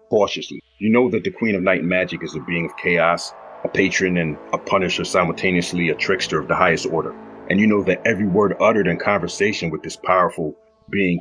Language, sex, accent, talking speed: English, male, American, 210 wpm